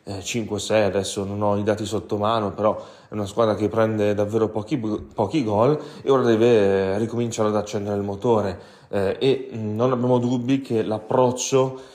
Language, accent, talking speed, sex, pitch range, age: Italian, native, 155 wpm, male, 100-115 Hz, 20-39